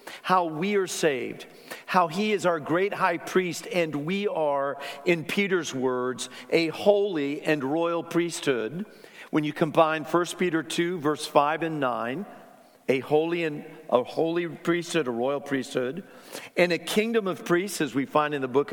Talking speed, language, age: 160 wpm, English, 50-69